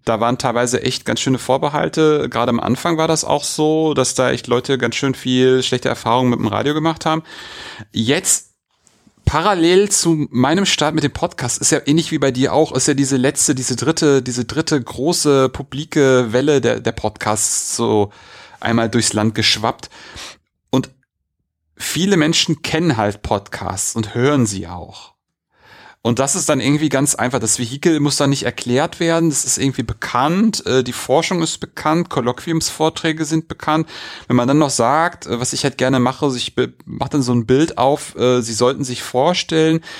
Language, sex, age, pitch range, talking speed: German, male, 30-49, 120-155 Hz, 185 wpm